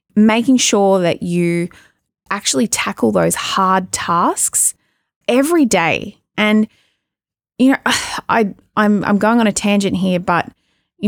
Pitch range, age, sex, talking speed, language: 175-220 Hz, 20-39, female, 130 wpm, English